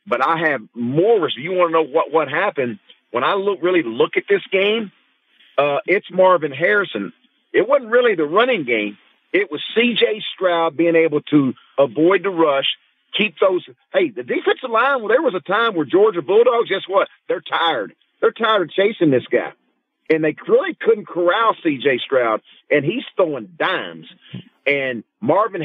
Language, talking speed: English, 185 wpm